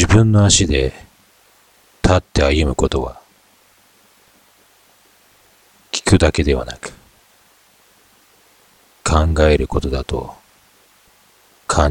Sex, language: male, Japanese